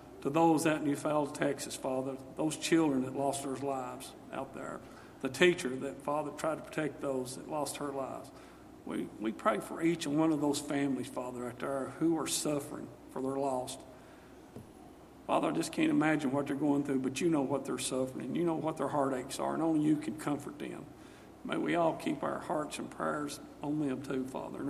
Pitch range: 135-165 Hz